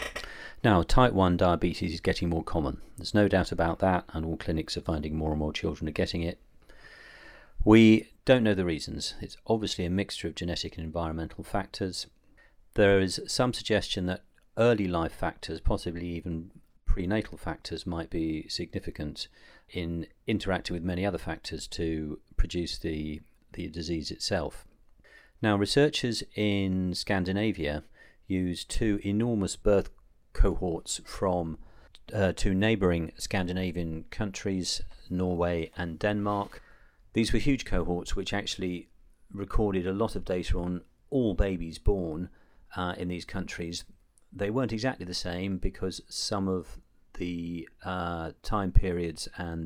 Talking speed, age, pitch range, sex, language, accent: 140 wpm, 40-59, 85-100 Hz, male, English, British